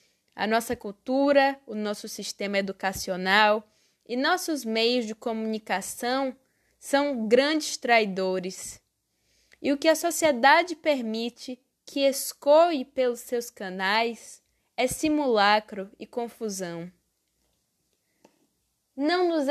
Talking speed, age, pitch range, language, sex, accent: 100 wpm, 10-29, 205-290 Hz, Portuguese, female, Brazilian